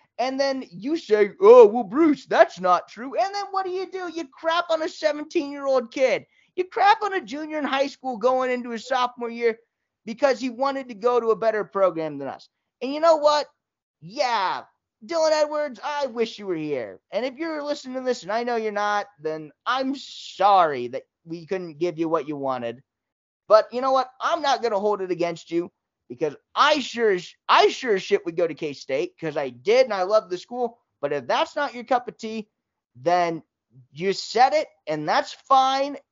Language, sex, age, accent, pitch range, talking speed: English, male, 20-39, American, 190-290 Hz, 210 wpm